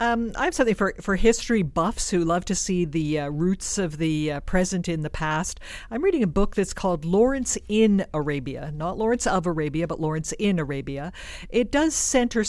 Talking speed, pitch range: 200 wpm, 155-185 Hz